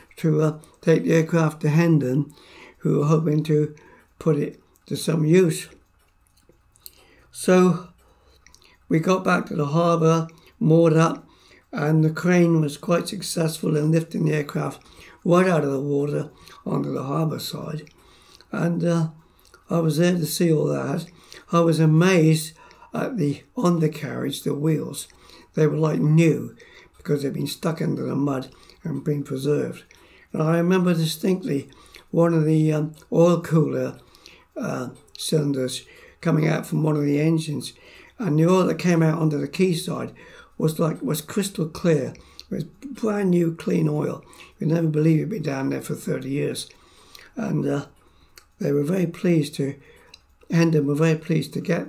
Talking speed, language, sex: 160 wpm, English, male